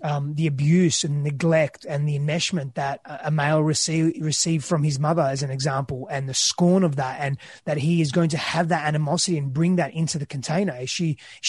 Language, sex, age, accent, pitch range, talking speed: English, male, 20-39, Australian, 150-180 Hz, 220 wpm